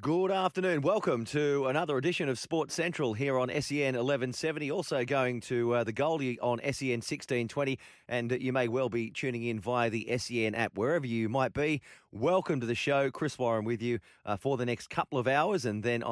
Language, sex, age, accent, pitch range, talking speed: English, male, 30-49, Australian, 110-140 Hz, 205 wpm